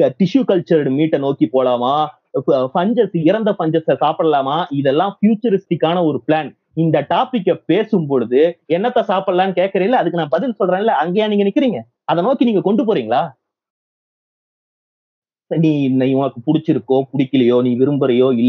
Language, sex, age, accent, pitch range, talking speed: Tamil, male, 30-49, native, 130-180 Hz, 180 wpm